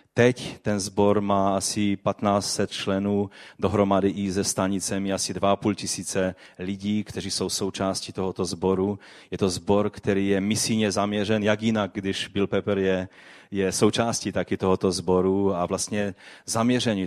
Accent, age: native, 30-49